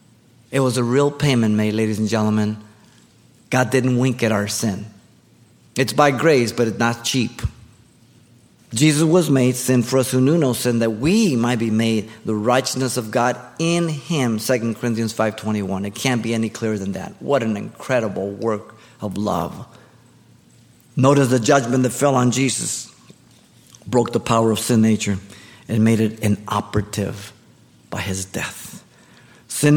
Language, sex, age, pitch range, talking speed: English, male, 50-69, 110-135 Hz, 160 wpm